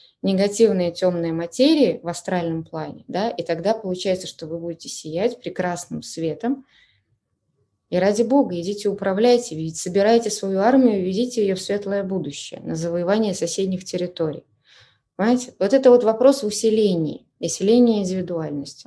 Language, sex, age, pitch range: Russian, female, 20-39, 170-215 Hz